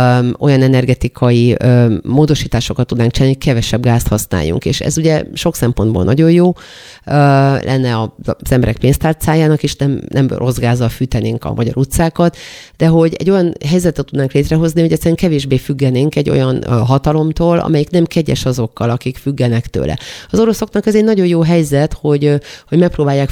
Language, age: Hungarian, 30-49